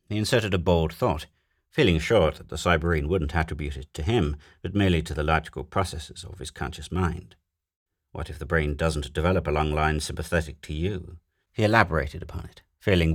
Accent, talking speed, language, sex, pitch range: British, 190 wpm, English, male, 75-90 Hz